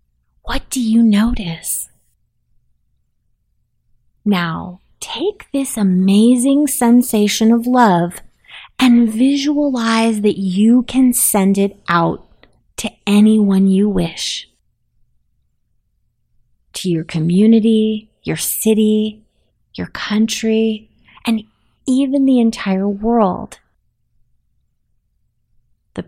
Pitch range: 175-225 Hz